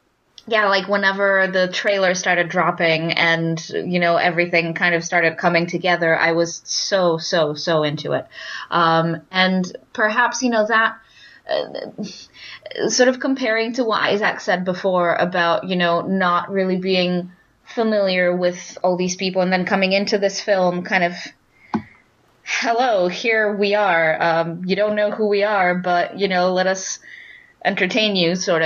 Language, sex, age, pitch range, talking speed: English, female, 20-39, 170-200 Hz, 160 wpm